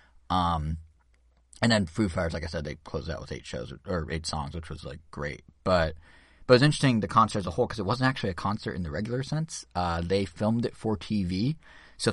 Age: 30-49